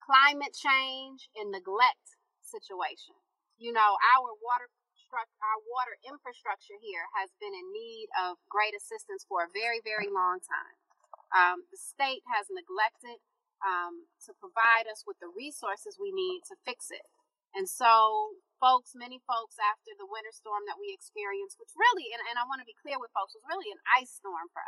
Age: 30-49